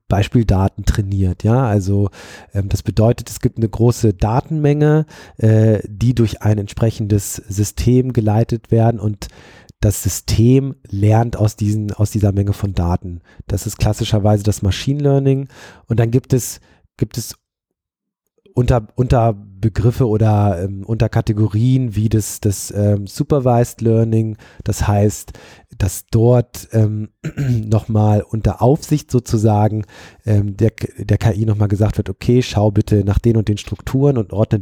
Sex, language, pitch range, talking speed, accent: male, German, 100-115 Hz, 145 wpm, German